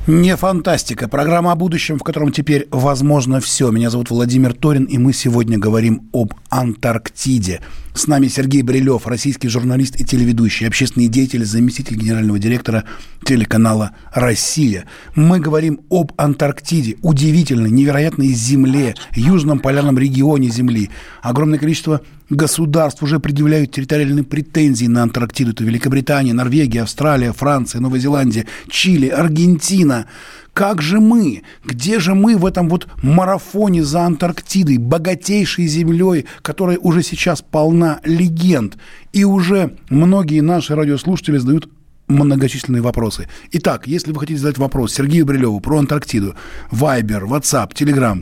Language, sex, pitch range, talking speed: Russian, male, 125-160 Hz, 130 wpm